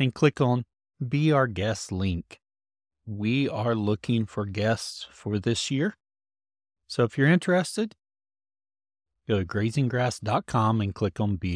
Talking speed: 135 wpm